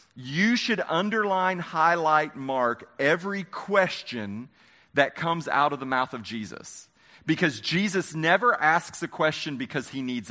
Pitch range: 135-190 Hz